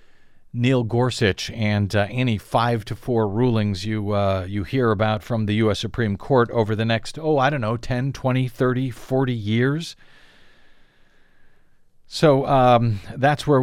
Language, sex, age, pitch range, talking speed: English, male, 50-69, 105-130 Hz, 155 wpm